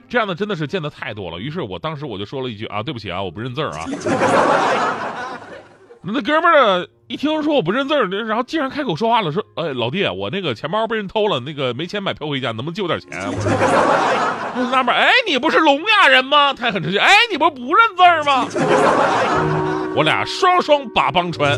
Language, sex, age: Chinese, male, 30-49